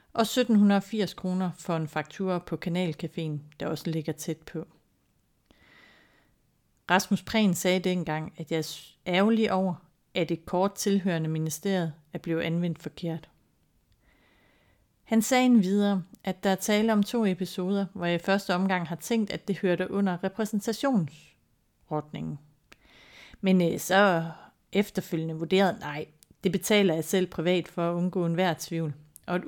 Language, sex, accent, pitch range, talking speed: Danish, female, native, 160-195 Hz, 145 wpm